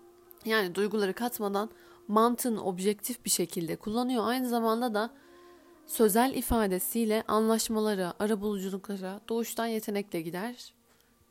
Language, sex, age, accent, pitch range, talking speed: Turkish, female, 30-49, native, 195-245 Hz, 100 wpm